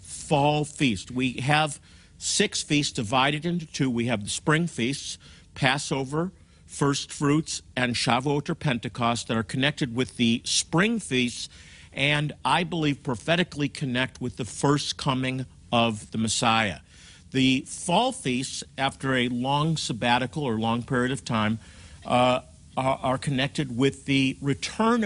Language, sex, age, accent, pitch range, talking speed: English, male, 50-69, American, 115-150 Hz, 140 wpm